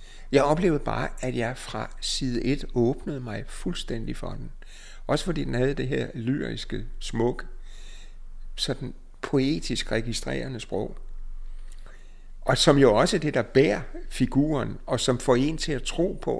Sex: male